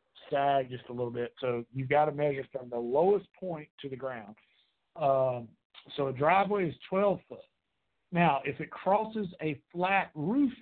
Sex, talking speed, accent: male, 175 wpm, American